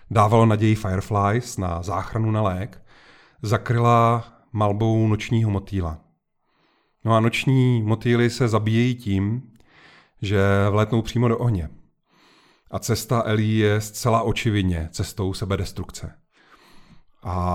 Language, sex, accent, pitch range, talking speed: Czech, male, native, 100-115 Hz, 110 wpm